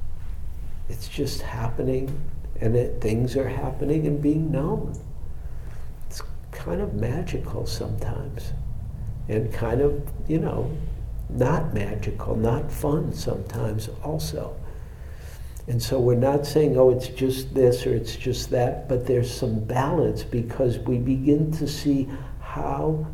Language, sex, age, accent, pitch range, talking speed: English, male, 60-79, American, 95-130 Hz, 125 wpm